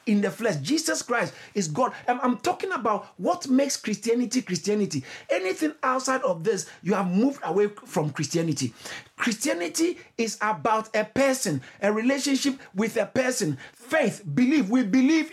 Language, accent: English, Nigerian